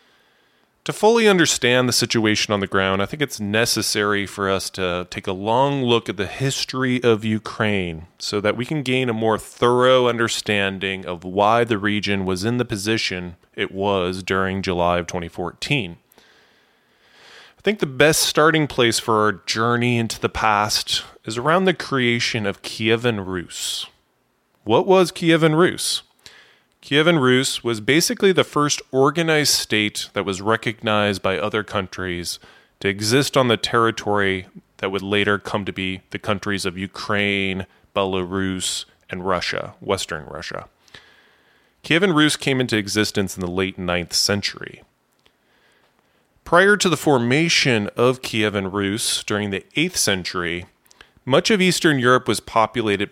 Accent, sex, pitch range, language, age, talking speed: American, male, 95-125 Hz, English, 20-39, 150 wpm